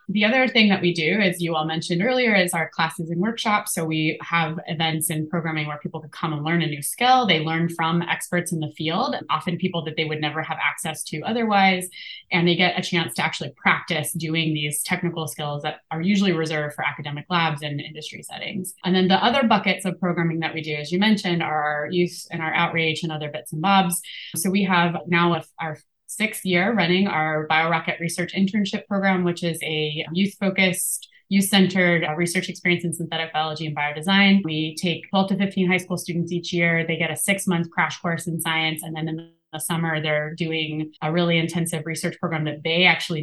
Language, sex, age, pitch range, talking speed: English, female, 20-39, 160-185 Hz, 210 wpm